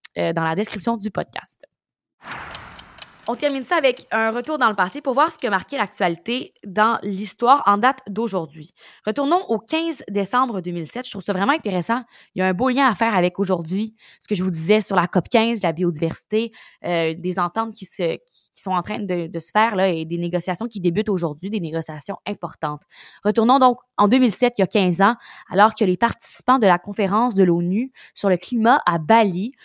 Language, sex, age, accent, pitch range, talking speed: French, female, 20-39, Canadian, 185-240 Hz, 205 wpm